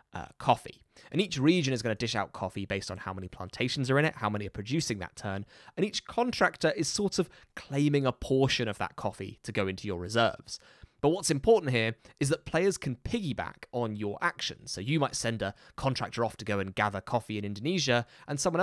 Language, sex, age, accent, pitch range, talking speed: English, male, 20-39, British, 105-145 Hz, 225 wpm